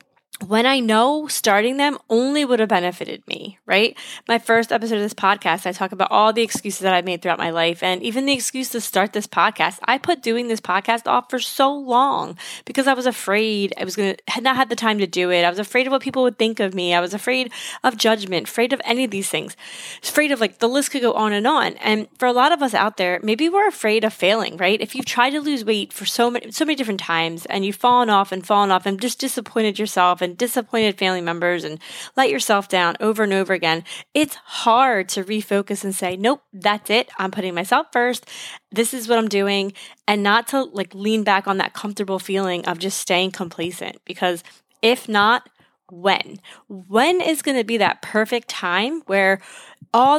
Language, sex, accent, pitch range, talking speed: English, female, American, 195-250 Hz, 225 wpm